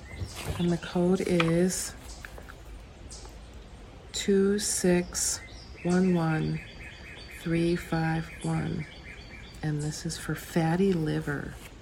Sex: female